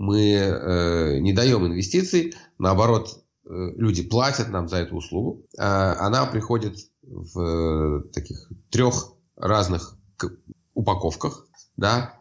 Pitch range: 85-110 Hz